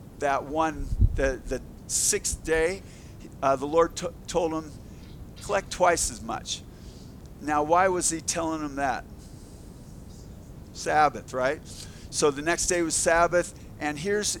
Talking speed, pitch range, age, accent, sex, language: 135 wpm, 130-165 Hz, 50-69, American, male, English